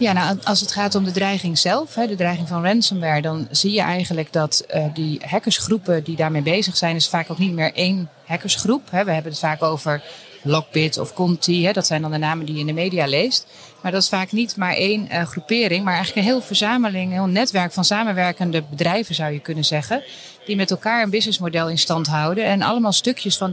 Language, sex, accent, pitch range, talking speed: Dutch, female, Dutch, 165-205 Hz, 215 wpm